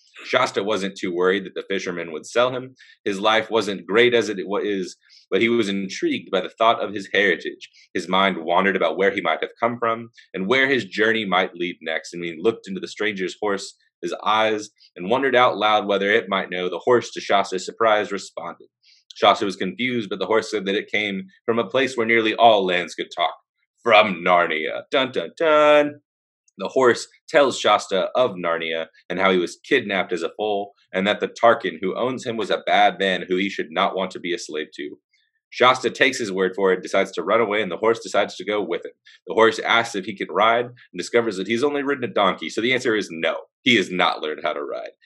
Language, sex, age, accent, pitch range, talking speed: English, male, 30-49, American, 95-150 Hz, 230 wpm